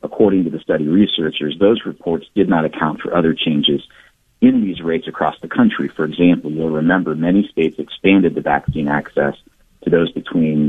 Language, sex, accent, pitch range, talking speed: English, male, American, 80-90 Hz, 180 wpm